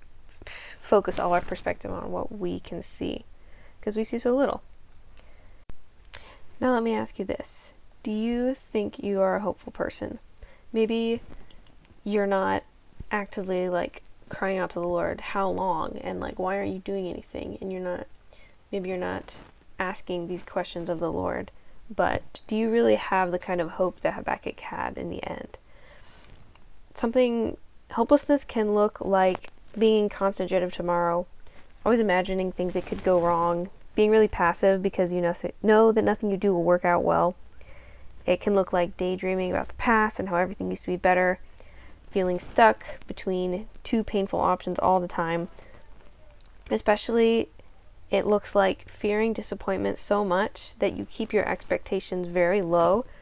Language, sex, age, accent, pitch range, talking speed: English, female, 10-29, American, 175-215 Hz, 165 wpm